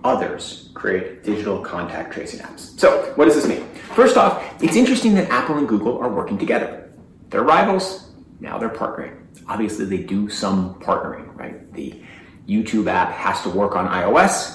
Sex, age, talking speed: male, 30-49, 170 wpm